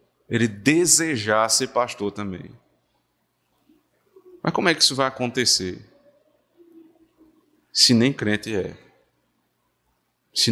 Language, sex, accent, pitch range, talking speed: Portuguese, male, Brazilian, 110-155 Hz, 95 wpm